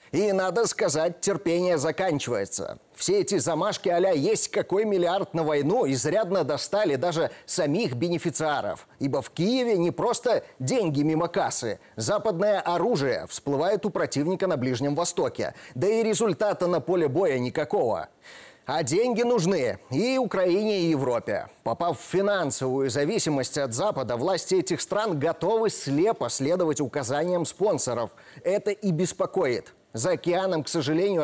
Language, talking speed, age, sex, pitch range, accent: Russian, 135 wpm, 30-49, male, 145-200 Hz, native